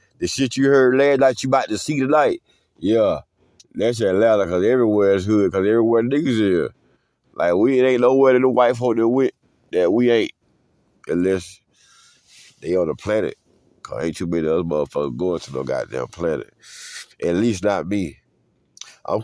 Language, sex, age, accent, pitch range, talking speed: English, male, 50-69, American, 100-130 Hz, 200 wpm